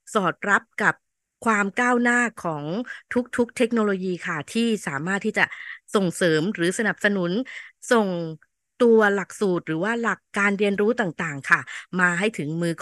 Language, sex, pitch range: Thai, female, 185-230 Hz